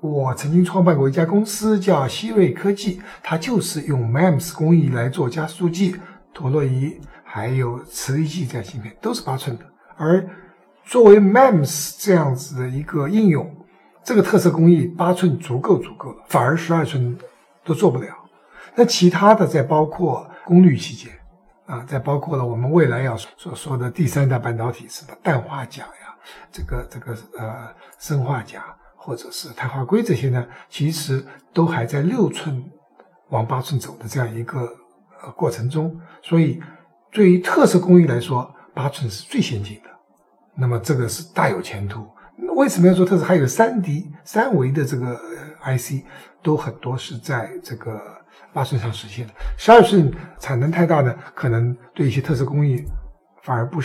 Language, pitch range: Chinese, 125-180 Hz